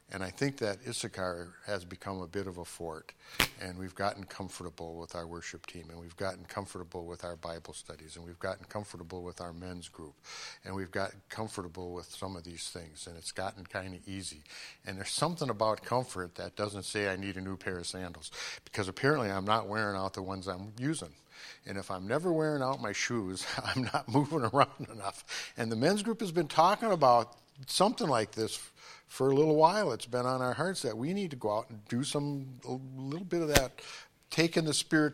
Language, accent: English, American